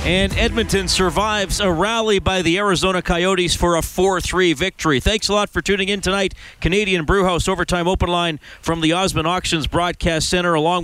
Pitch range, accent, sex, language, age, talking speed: 150-185 Hz, American, male, English, 40-59, 175 wpm